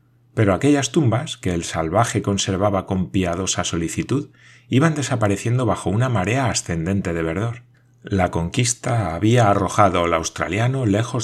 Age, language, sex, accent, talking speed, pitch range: 30-49, Spanish, male, Spanish, 135 wpm, 90-125 Hz